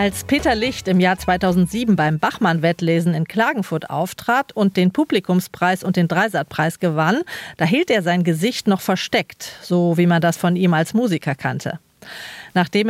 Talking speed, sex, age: 165 wpm, female, 40-59